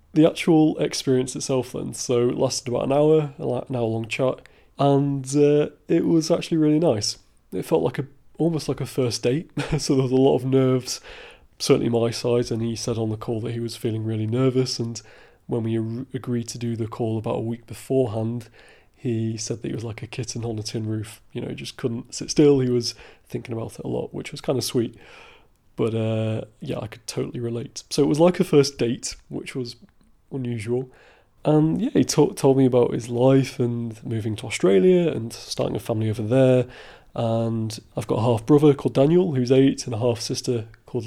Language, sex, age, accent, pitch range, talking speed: English, male, 20-39, British, 115-140 Hz, 215 wpm